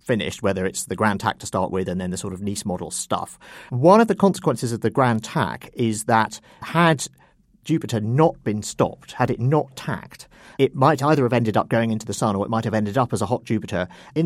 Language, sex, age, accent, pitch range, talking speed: English, male, 50-69, British, 100-130 Hz, 240 wpm